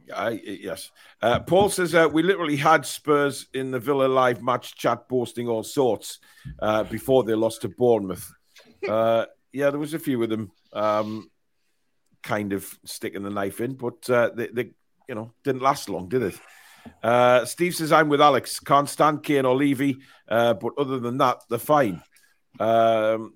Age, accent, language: 50-69, British, English